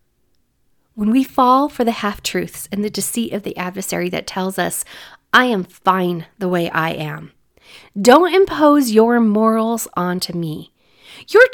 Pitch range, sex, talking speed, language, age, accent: 180-250 Hz, female, 155 wpm, English, 40-59, American